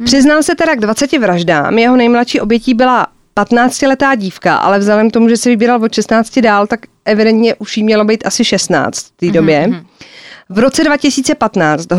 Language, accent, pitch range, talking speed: Czech, native, 205-250 Hz, 175 wpm